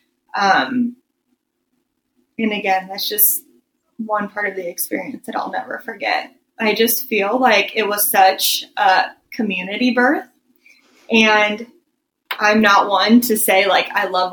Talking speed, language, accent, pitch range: 140 wpm, English, American, 200-245 Hz